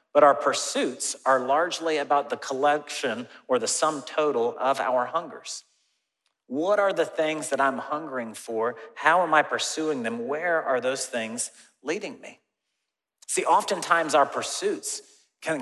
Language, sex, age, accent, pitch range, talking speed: English, male, 40-59, American, 130-160 Hz, 150 wpm